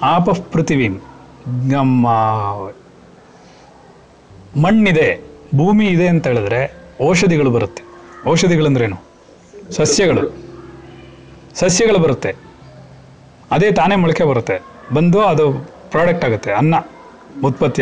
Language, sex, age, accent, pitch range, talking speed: Kannada, male, 40-59, native, 125-180 Hz, 75 wpm